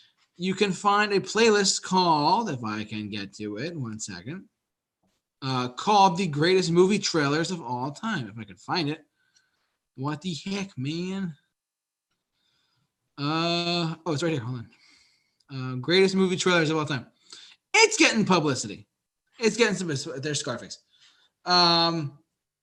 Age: 20-39